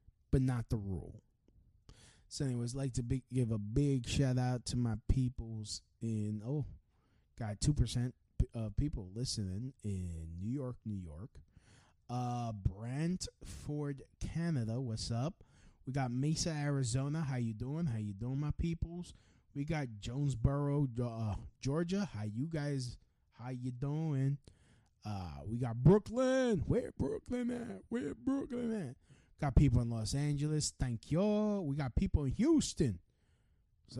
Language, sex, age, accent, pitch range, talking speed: English, male, 20-39, American, 115-155 Hz, 145 wpm